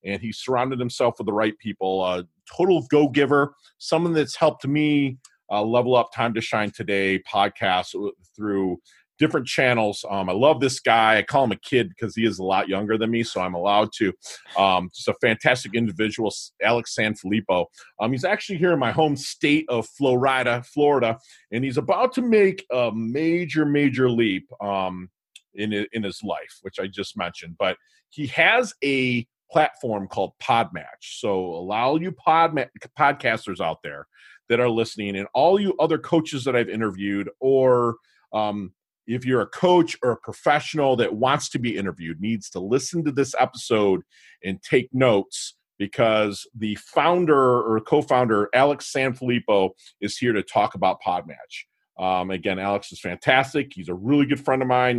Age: 40-59